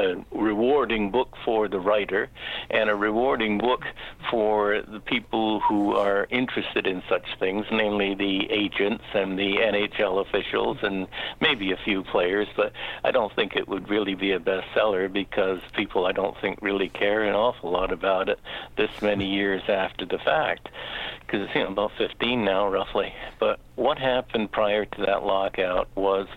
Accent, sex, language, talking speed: American, male, English, 170 wpm